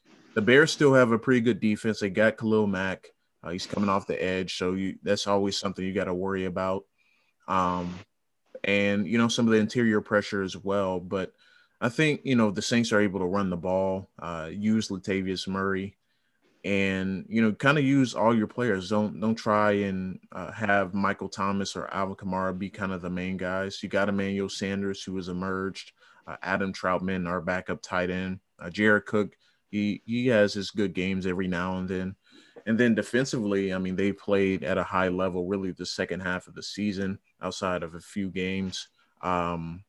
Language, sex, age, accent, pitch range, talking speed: English, male, 20-39, American, 95-105 Hz, 200 wpm